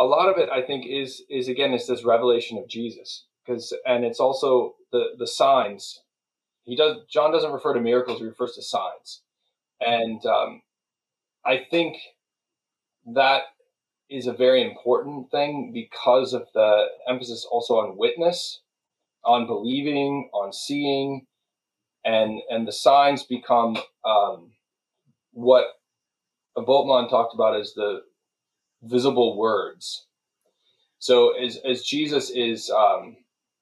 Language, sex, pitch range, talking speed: English, male, 115-170 Hz, 130 wpm